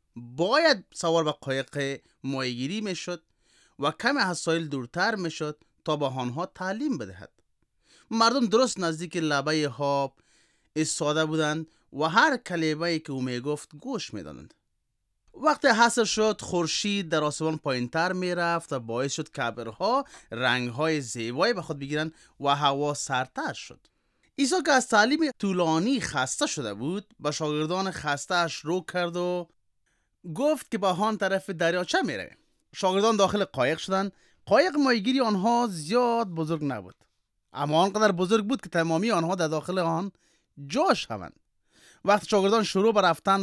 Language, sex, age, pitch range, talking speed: Persian, male, 30-49, 145-200 Hz, 150 wpm